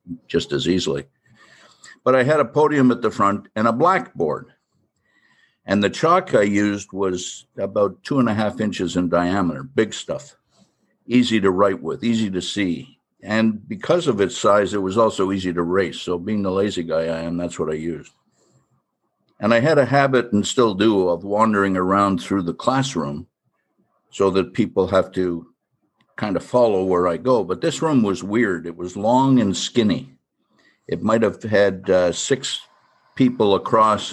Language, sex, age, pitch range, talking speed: English, male, 60-79, 90-110 Hz, 180 wpm